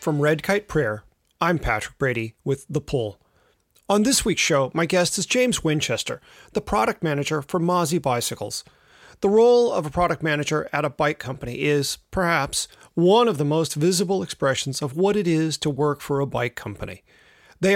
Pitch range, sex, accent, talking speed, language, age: 145-190 Hz, male, American, 185 wpm, English, 40-59